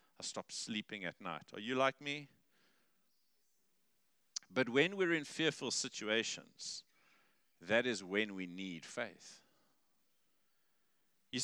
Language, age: English, 50-69